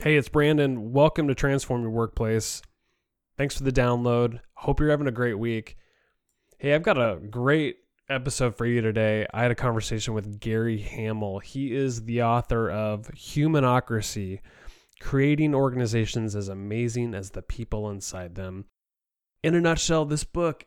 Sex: male